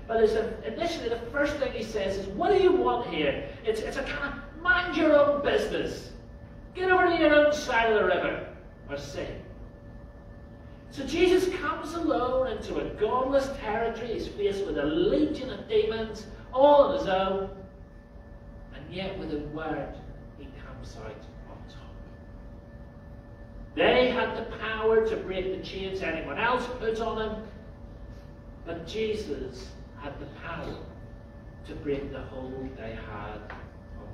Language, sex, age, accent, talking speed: English, male, 40-59, British, 155 wpm